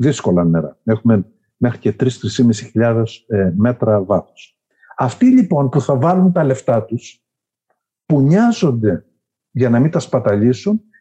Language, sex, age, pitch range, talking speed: Greek, male, 50-69, 110-180 Hz, 130 wpm